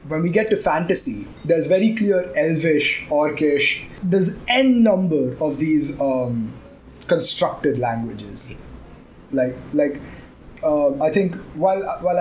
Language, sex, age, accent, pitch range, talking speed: English, male, 20-39, Indian, 135-175 Hz, 125 wpm